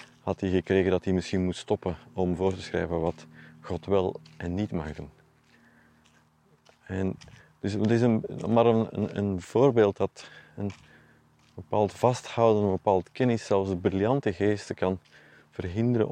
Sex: male